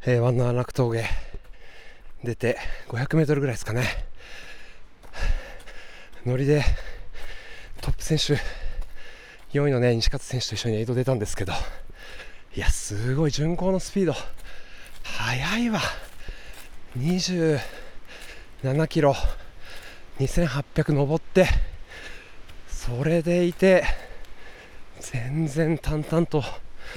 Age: 20-39